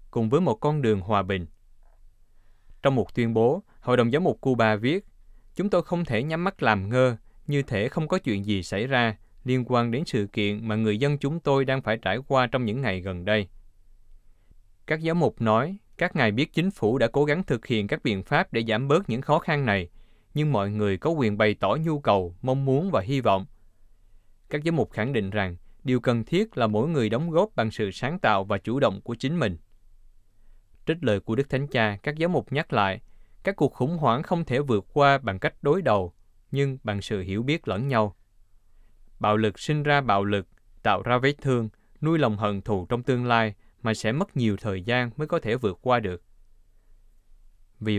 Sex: male